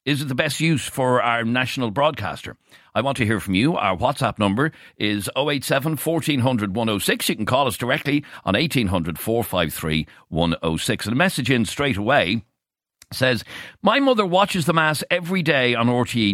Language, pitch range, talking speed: English, 100-140 Hz, 185 wpm